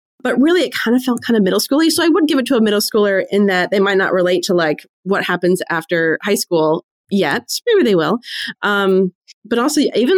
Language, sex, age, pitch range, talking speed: English, female, 20-39, 175-230 Hz, 235 wpm